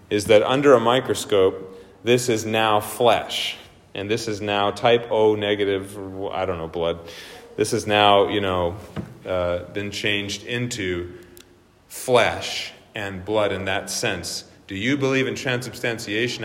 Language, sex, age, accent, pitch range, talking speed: English, male, 30-49, American, 100-120 Hz, 145 wpm